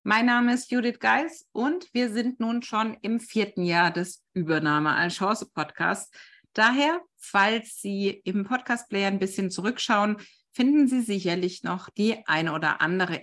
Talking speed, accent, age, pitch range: 160 wpm, German, 50-69, 180-245 Hz